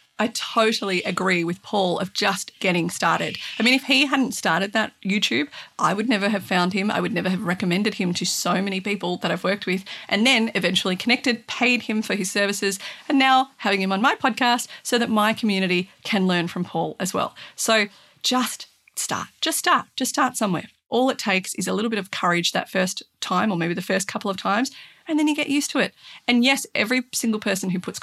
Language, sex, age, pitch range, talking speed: English, female, 30-49, 185-240 Hz, 225 wpm